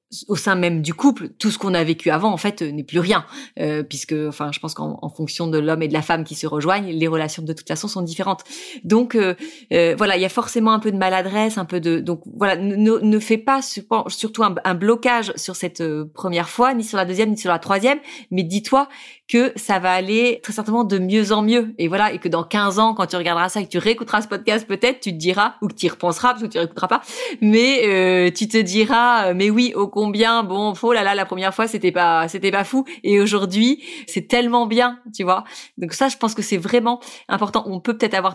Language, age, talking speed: French, 30-49, 255 wpm